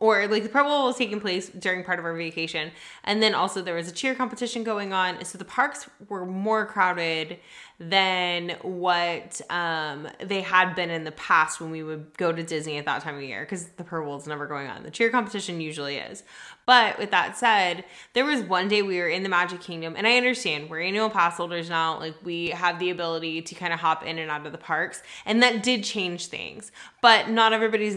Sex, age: female, 20-39